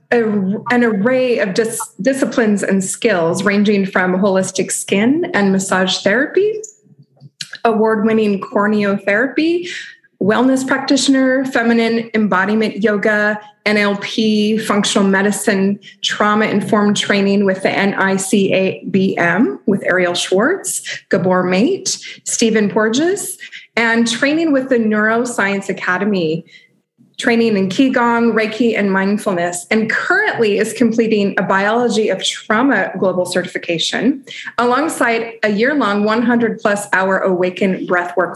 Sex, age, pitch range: female, 20-39, 190-230 Hz